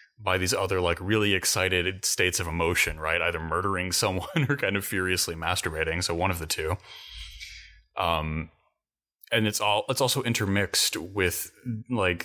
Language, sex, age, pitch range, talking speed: English, male, 20-39, 85-100 Hz, 155 wpm